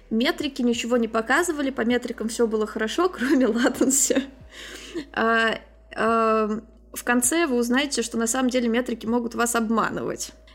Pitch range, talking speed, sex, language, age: 230-265 Hz, 130 wpm, female, Russian, 20-39